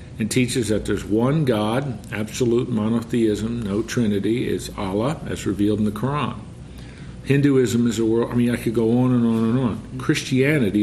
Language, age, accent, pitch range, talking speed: English, 50-69, American, 110-125 Hz, 175 wpm